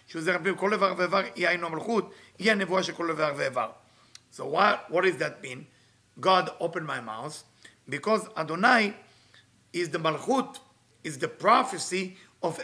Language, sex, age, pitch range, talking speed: English, male, 50-69, 170-210 Hz, 90 wpm